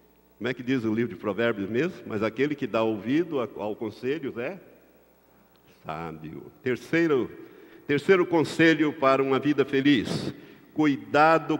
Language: Portuguese